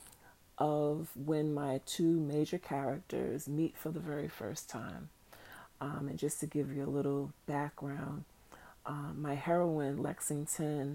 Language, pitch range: English, 130-155 Hz